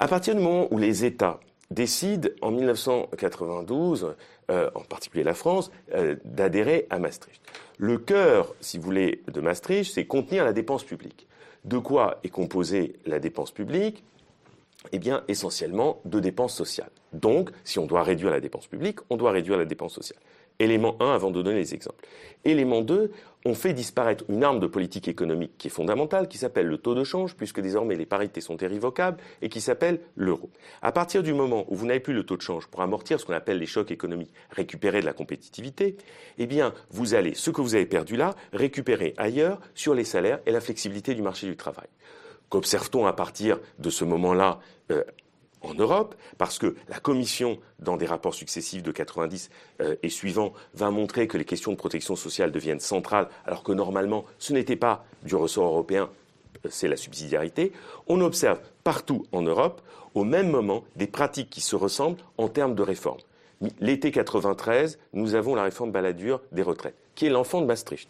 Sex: male